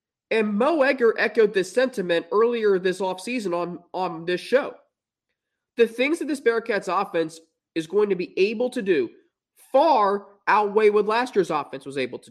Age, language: 20-39, English